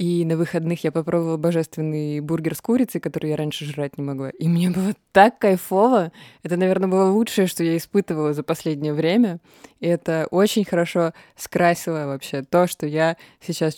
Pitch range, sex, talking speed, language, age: 155-190 Hz, female, 175 wpm, Russian, 20-39